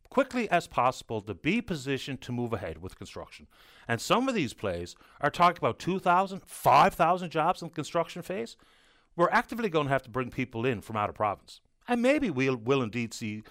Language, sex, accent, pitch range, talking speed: English, male, American, 115-175 Hz, 200 wpm